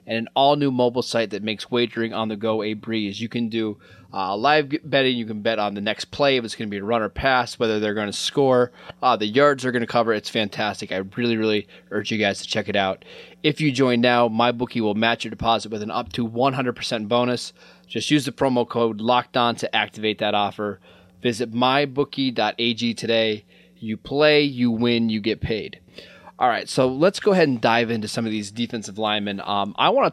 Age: 20-39